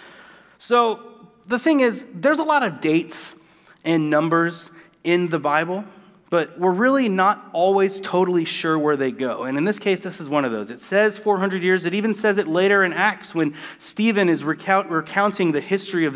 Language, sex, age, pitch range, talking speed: English, male, 30-49, 145-195 Hz, 190 wpm